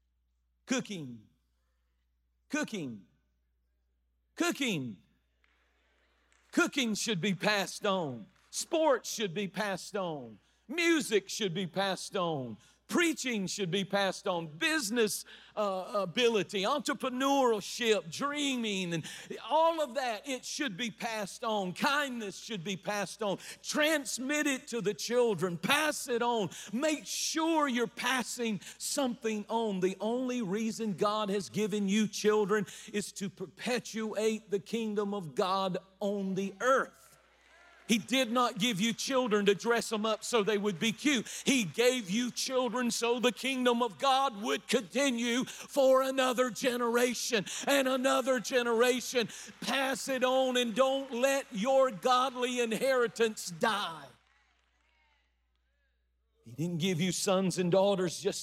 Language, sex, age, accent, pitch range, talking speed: English, male, 50-69, American, 185-245 Hz, 125 wpm